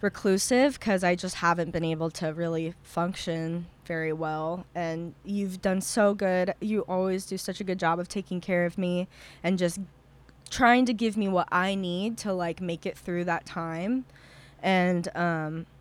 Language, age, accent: English, 20-39, American